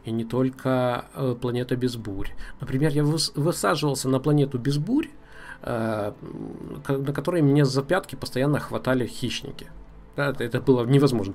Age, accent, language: 20-39, native, Russian